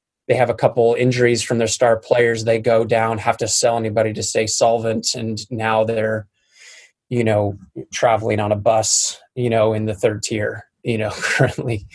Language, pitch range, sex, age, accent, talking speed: English, 110-130 Hz, male, 20-39, American, 185 wpm